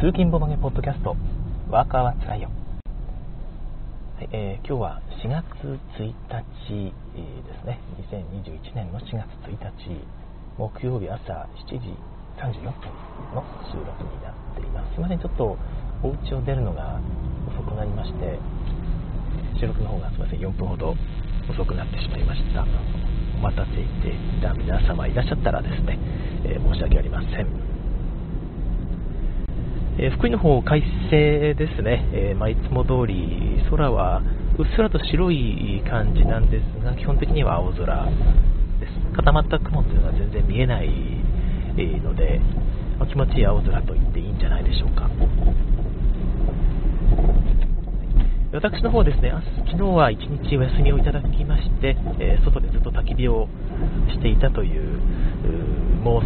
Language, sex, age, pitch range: Japanese, male, 40-59, 90-135 Hz